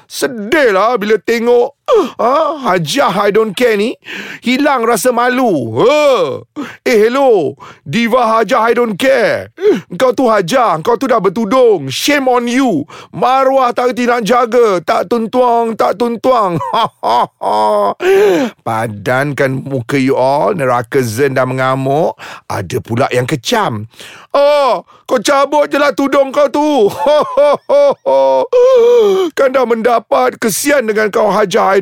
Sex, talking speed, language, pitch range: male, 130 wpm, Malay, 185-260 Hz